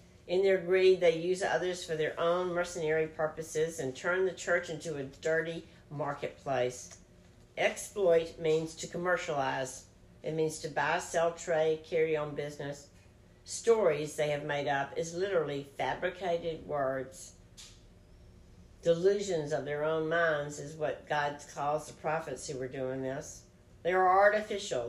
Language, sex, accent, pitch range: English, female, American, 140-170 Hz